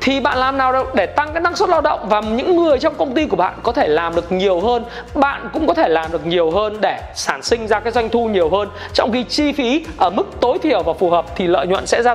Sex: male